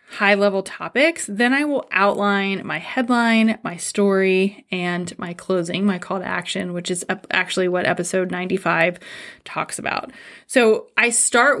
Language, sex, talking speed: English, female, 145 wpm